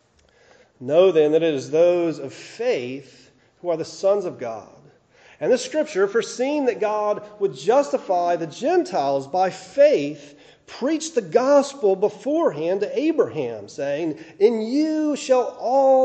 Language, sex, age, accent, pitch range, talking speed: English, male, 40-59, American, 155-245 Hz, 140 wpm